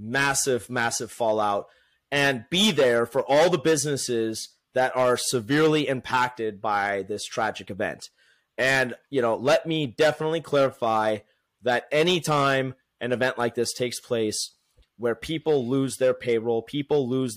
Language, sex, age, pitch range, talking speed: English, male, 30-49, 115-145 Hz, 140 wpm